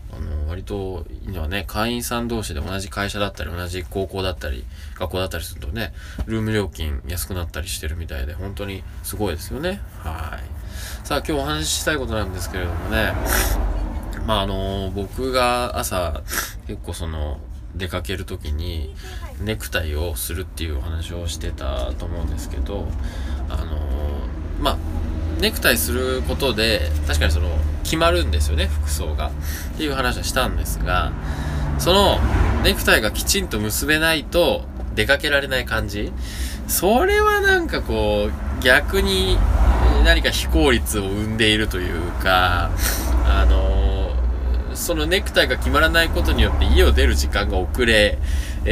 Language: Japanese